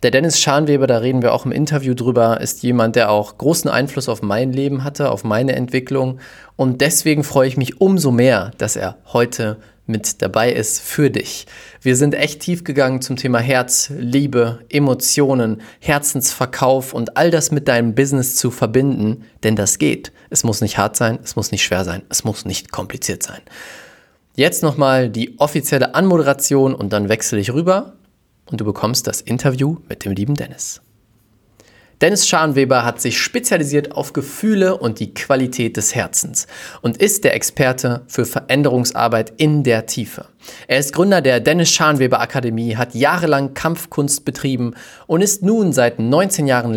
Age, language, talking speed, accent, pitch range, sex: 20-39, German, 170 wpm, German, 115-145 Hz, male